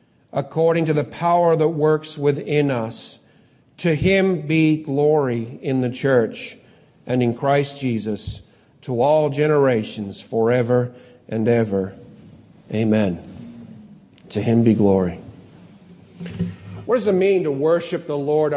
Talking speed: 125 wpm